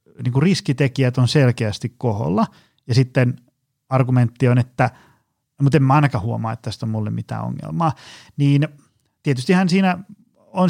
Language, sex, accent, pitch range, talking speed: Finnish, male, native, 120-150 Hz, 145 wpm